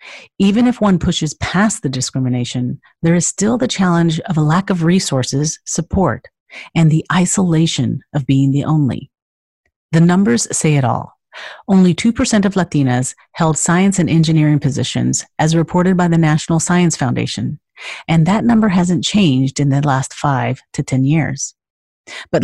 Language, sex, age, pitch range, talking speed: English, female, 40-59, 145-185 Hz, 160 wpm